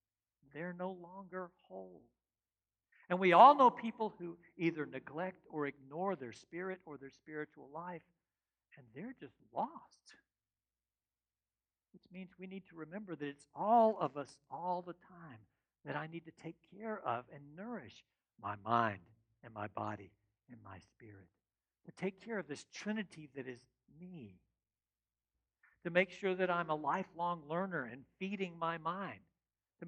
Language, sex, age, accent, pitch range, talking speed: English, male, 60-79, American, 130-190 Hz, 155 wpm